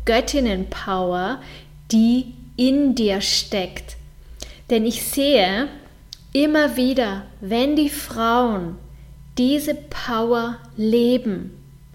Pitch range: 210-255 Hz